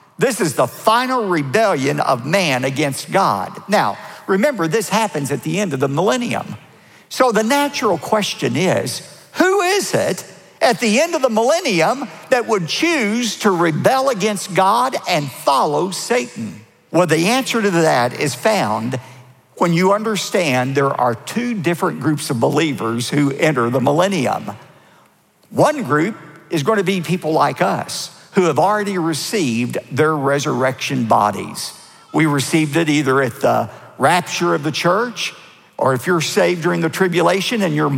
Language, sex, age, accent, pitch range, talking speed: English, male, 50-69, American, 150-215 Hz, 155 wpm